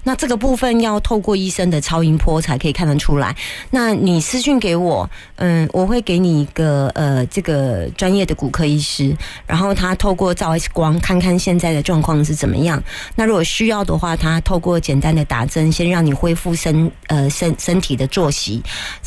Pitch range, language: 145-185 Hz, Chinese